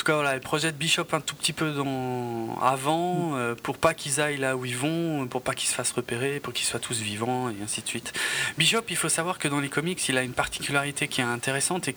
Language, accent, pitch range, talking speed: French, French, 125-160 Hz, 265 wpm